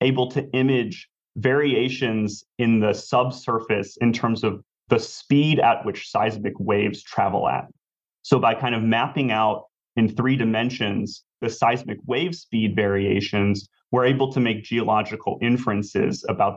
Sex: male